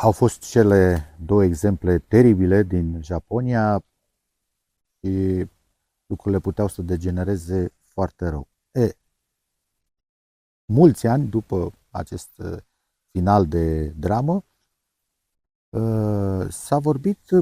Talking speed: 85 wpm